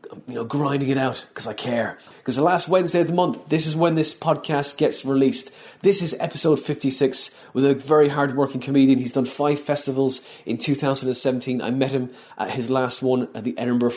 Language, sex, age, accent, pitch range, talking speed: English, male, 30-49, British, 130-150 Hz, 200 wpm